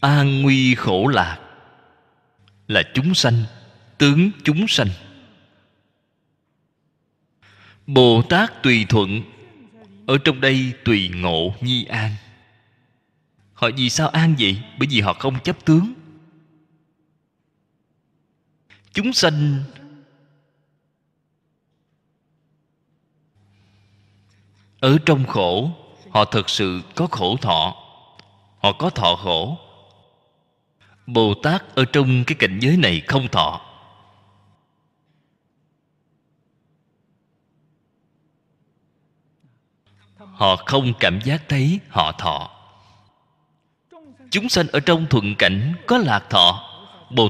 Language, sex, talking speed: Vietnamese, male, 95 wpm